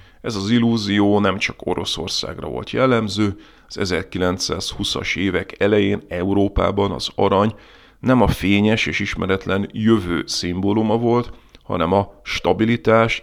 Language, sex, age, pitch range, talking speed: Hungarian, male, 40-59, 95-115 Hz, 120 wpm